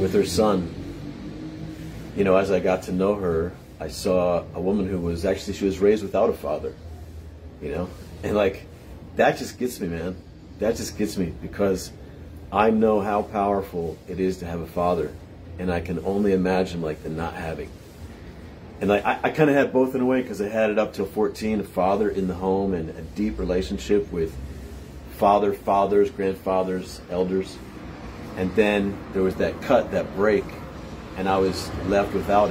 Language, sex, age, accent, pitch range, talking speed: English, male, 40-59, American, 80-100 Hz, 185 wpm